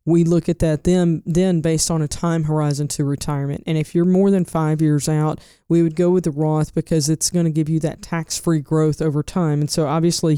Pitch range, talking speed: 155-175 Hz, 235 wpm